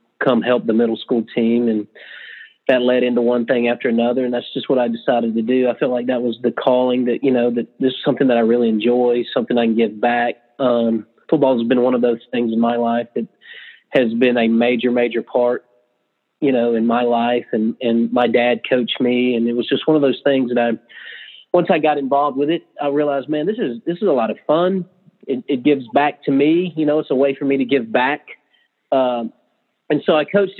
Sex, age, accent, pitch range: male, 30-49, American, 120-135 Hz